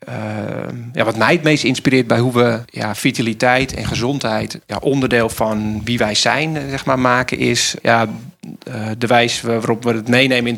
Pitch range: 110-125 Hz